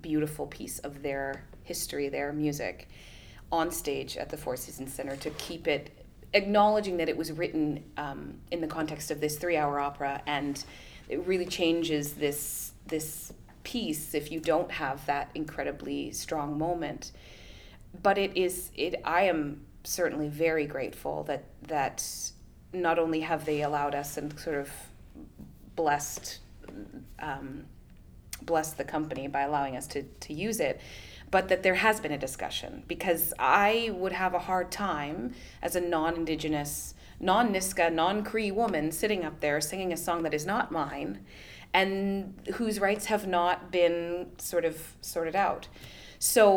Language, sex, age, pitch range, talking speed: English, female, 30-49, 145-175 Hz, 150 wpm